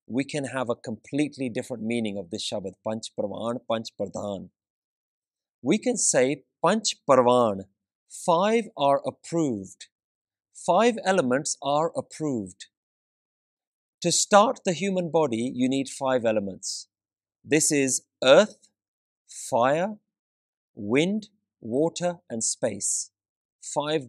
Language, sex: English, male